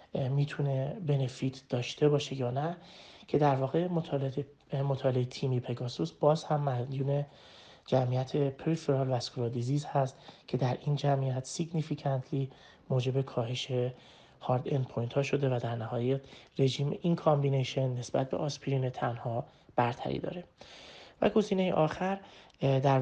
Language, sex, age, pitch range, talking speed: Persian, male, 30-49, 130-150 Hz, 125 wpm